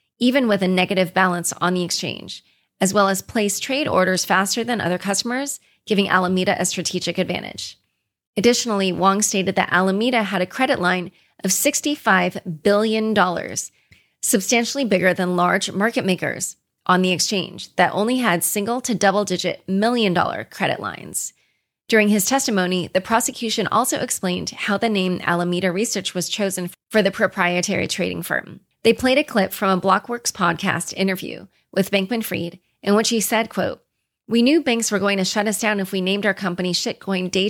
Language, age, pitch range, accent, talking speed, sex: English, 30-49, 180-220 Hz, American, 170 wpm, female